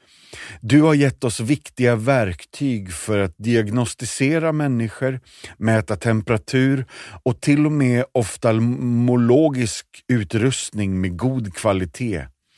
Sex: male